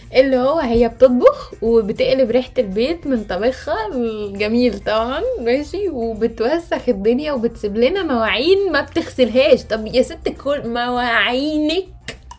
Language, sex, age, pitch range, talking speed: Arabic, female, 10-29, 235-295 Hz, 120 wpm